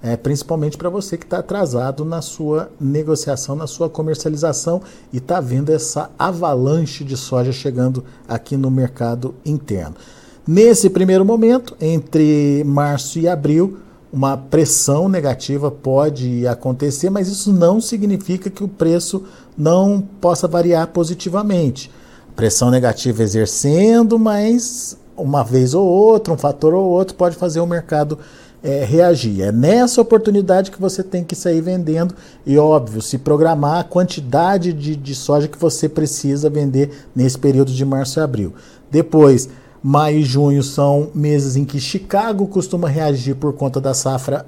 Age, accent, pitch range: 50-69, Brazilian, 140-185 Hz